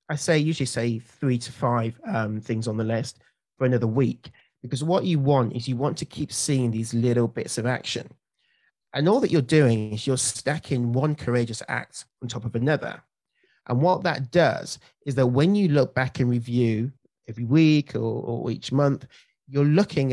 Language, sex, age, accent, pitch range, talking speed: English, male, 30-49, British, 120-150 Hz, 195 wpm